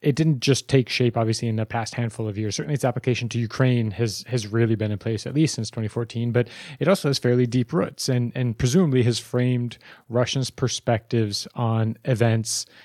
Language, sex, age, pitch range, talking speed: English, male, 30-49, 115-130 Hz, 200 wpm